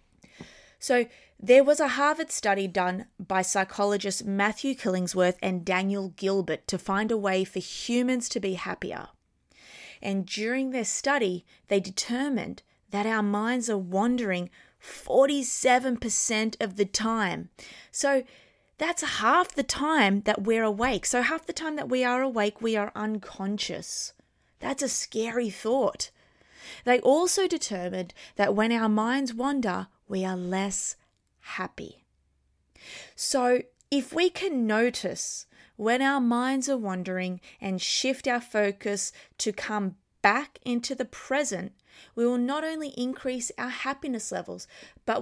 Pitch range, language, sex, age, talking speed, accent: 200-265 Hz, English, female, 20-39, 135 wpm, Australian